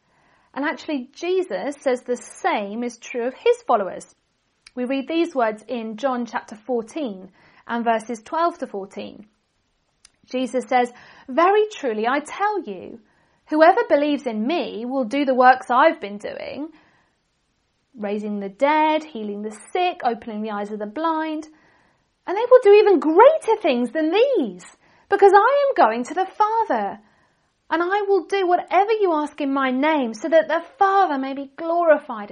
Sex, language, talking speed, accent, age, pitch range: female, English, 160 wpm, British, 40-59, 250-360 Hz